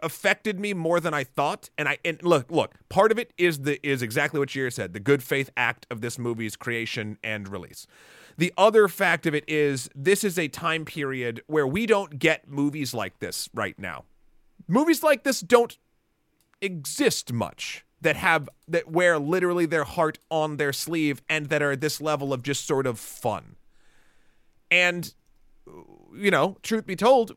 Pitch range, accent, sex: 145-185 Hz, American, male